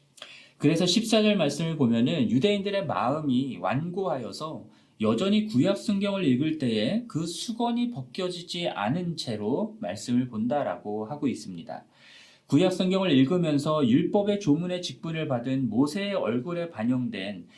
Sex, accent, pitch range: male, native, 135-195 Hz